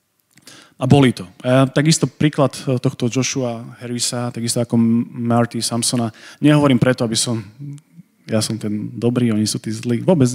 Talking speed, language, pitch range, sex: 150 wpm, Slovak, 115-135 Hz, male